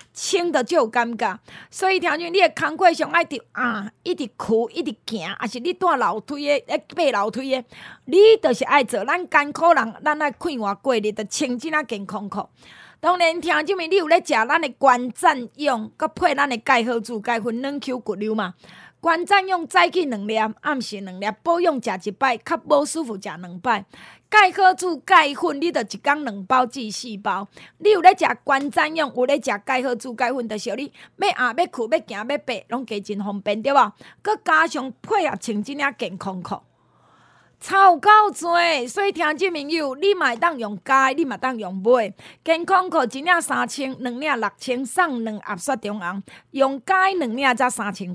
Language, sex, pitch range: Chinese, female, 230-335 Hz